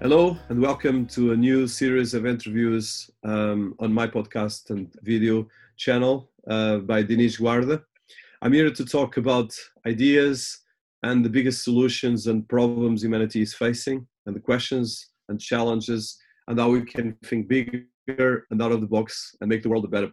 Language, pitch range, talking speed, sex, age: English, 115-130 Hz, 170 wpm, male, 30-49